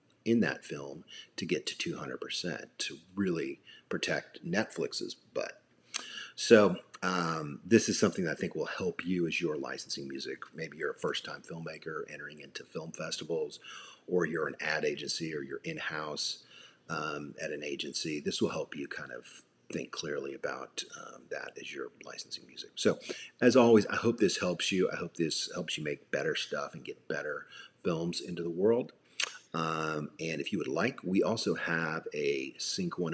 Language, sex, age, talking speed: English, male, 40-59, 180 wpm